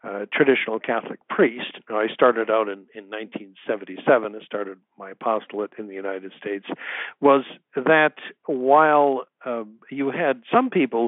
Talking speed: 140 wpm